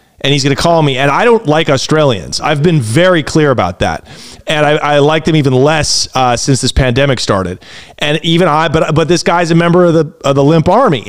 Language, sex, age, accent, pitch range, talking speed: English, male, 30-49, American, 125-155 Hz, 240 wpm